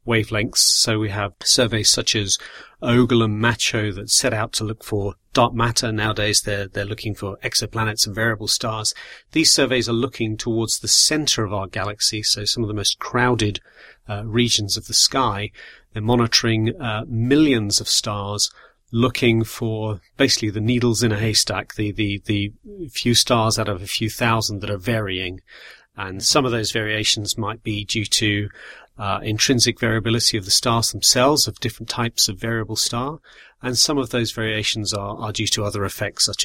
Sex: male